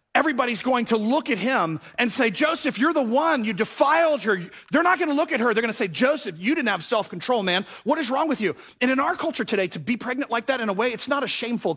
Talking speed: 275 wpm